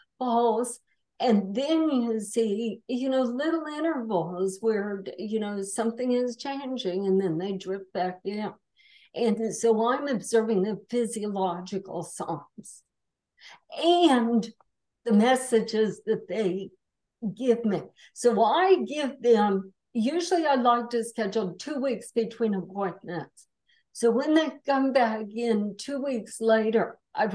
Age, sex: 60-79, female